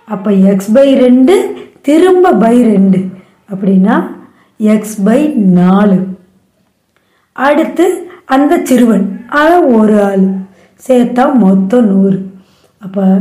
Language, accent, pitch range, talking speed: Tamil, native, 200-255 Hz, 100 wpm